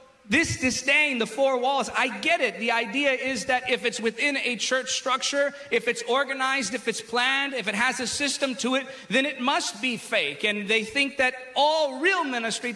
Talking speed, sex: 200 wpm, male